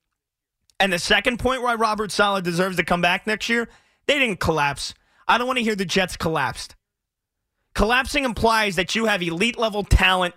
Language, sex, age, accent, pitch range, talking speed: English, male, 30-49, American, 175-220 Hz, 180 wpm